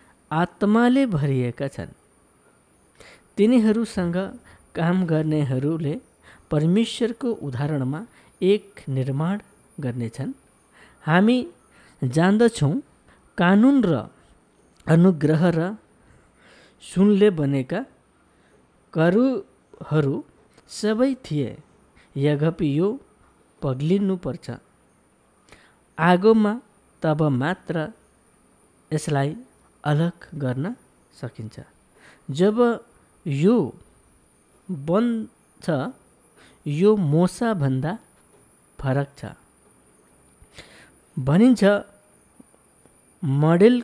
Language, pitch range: Malayalam, 145-210 Hz